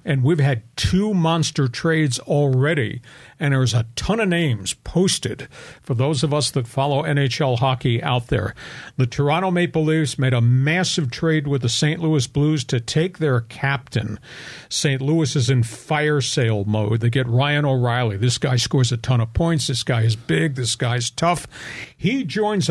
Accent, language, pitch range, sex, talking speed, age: American, English, 125-160 Hz, male, 180 wpm, 50-69